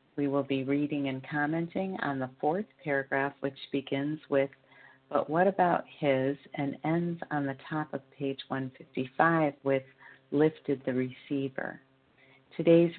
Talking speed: 140 wpm